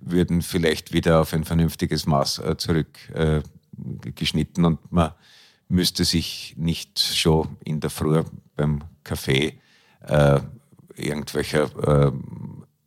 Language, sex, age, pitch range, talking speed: German, male, 50-69, 80-105 Hz, 100 wpm